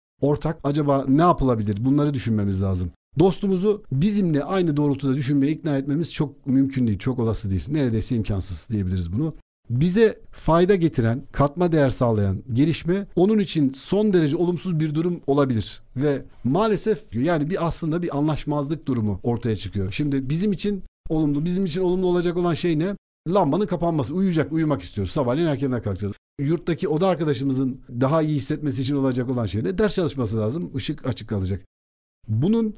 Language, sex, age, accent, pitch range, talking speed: Turkish, male, 60-79, native, 120-160 Hz, 155 wpm